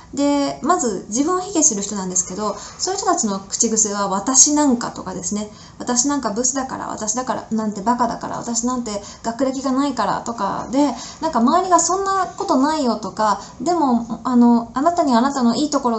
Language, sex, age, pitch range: Japanese, female, 20-39, 210-295 Hz